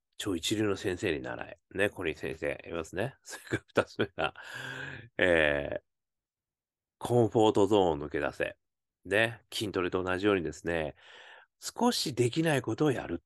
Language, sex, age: Japanese, male, 40-59